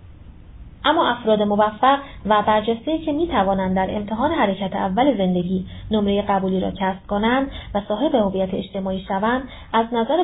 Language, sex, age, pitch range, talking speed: Persian, female, 30-49, 190-250 Hz, 140 wpm